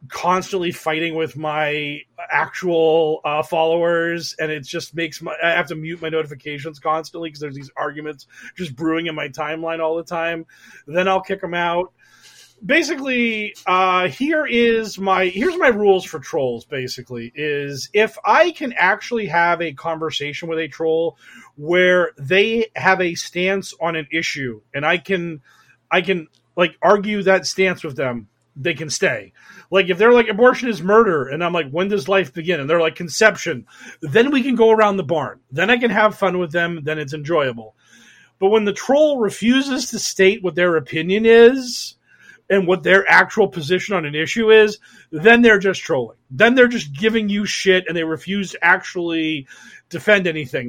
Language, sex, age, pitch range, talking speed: English, male, 30-49, 160-210 Hz, 180 wpm